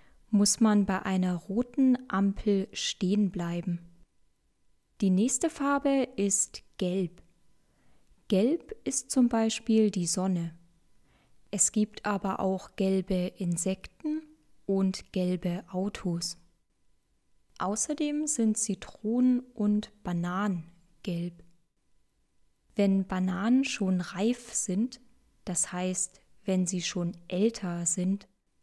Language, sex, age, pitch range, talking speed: German, female, 20-39, 180-225 Hz, 95 wpm